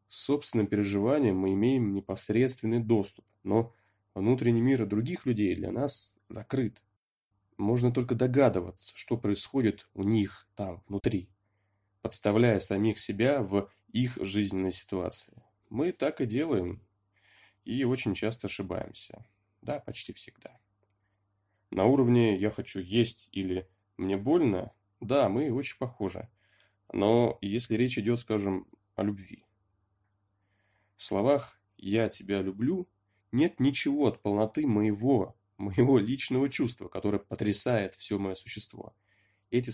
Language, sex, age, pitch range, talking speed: Russian, male, 20-39, 100-115 Hz, 120 wpm